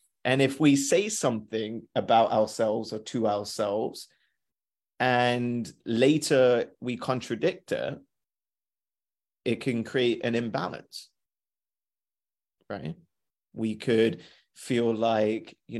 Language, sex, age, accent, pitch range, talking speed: English, male, 30-49, British, 110-130 Hz, 100 wpm